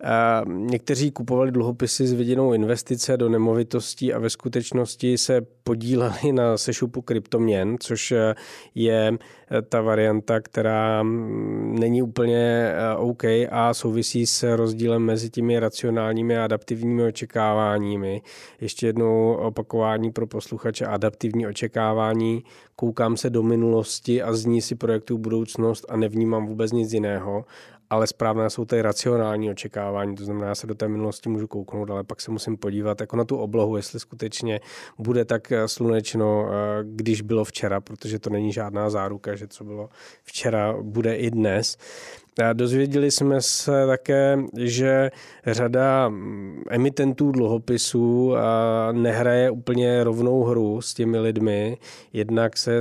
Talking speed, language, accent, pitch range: 130 wpm, Czech, native, 110-120 Hz